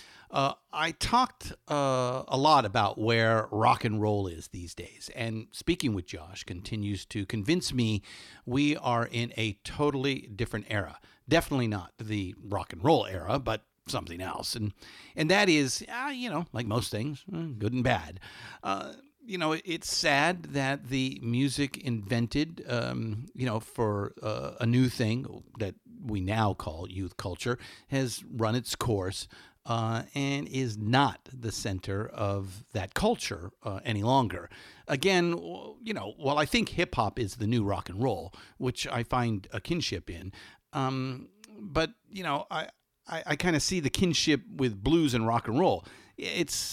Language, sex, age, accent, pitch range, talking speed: English, male, 50-69, American, 105-140 Hz, 165 wpm